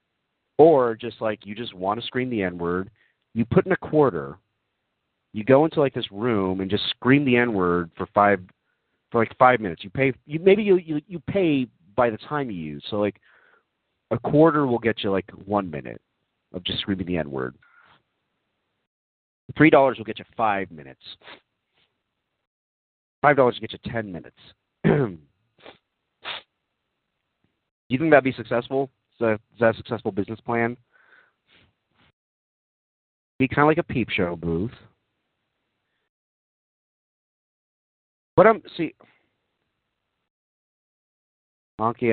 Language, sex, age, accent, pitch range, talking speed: English, male, 40-59, American, 95-125 Hz, 140 wpm